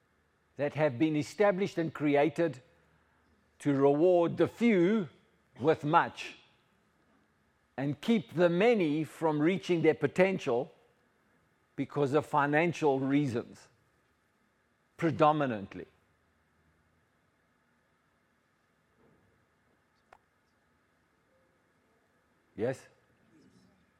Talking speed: 65 wpm